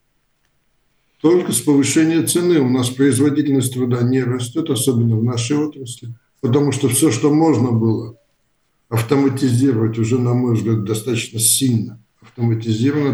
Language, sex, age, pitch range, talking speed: Russian, male, 60-79, 115-145 Hz, 130 wpm